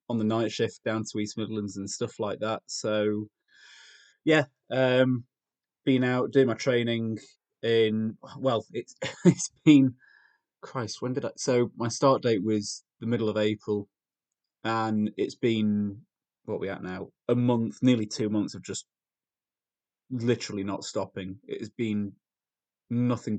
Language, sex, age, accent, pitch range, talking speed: English, male, 20-39, British, 105-125 Hz, 150 wpm